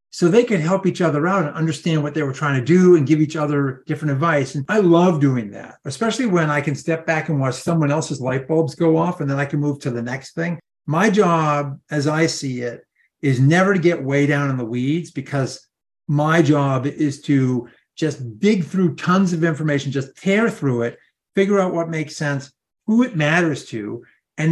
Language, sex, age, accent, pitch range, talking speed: English, male, 50-69, American, 135-165 Hz, 220 wpm